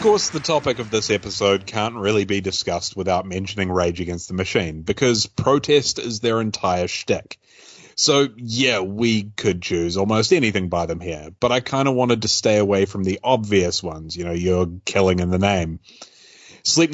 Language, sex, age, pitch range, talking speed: English, male, 30-49, 95-120 Hz, 190 wpm